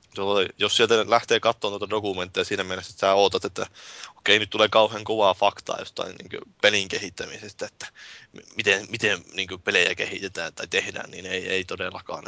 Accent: native